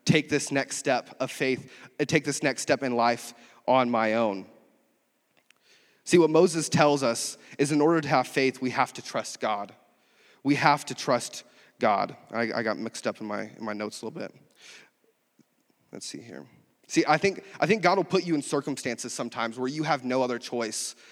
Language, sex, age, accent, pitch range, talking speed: English, male, 30-49, American, 135-165 Hz, 200 wpm